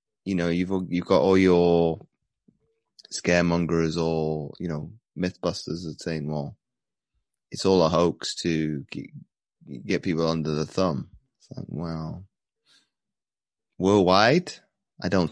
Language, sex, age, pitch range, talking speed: English, male, 20-39, 85-105 Hz, 120 wpm